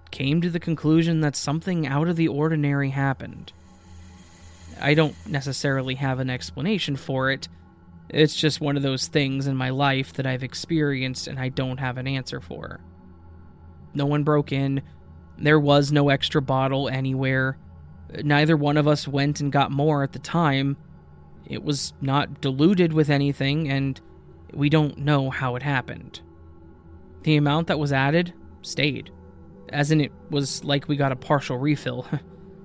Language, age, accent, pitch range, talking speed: English, 20-39, American, 120-150 Hz, 160 wpm